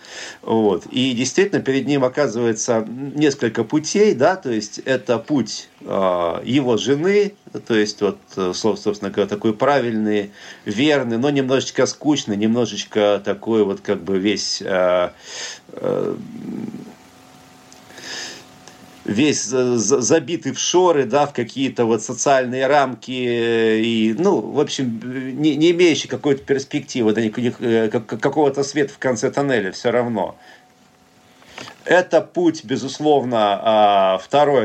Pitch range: 110-140 Hz